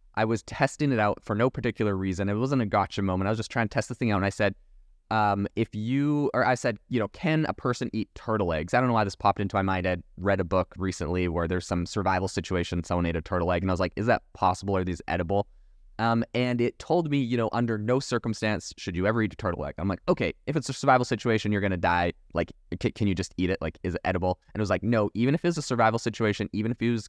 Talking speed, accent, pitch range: 280 wpm, American, 100-125 Hz